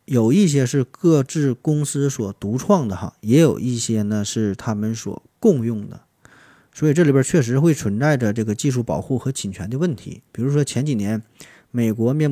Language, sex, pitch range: Chinese, male, 105-135 Hz